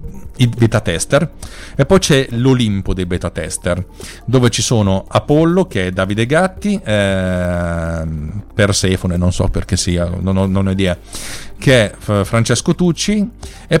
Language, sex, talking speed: Italian, male, 150 wpm